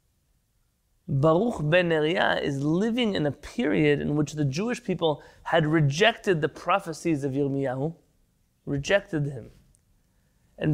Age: 30-49